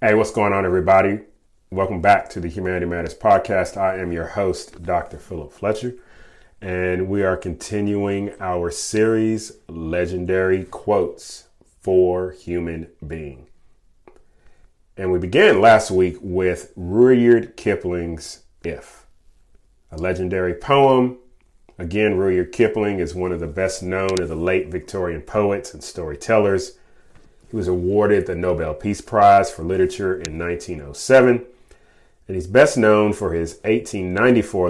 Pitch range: 85-105 Hz